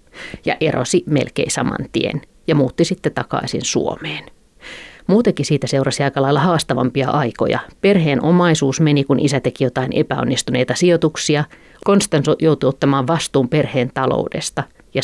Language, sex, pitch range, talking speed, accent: Finnish, female, 135-165 Hz, 130 wpm, native